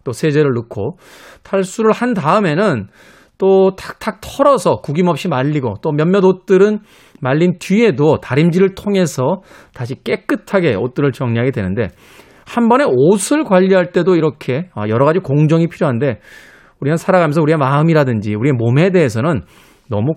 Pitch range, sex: 130-195 Hz, male